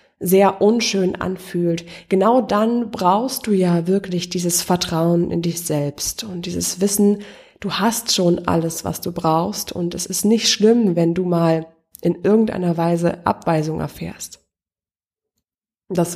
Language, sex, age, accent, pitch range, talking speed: German, female, 20-39, German, 175-205 Hz, 140 wpm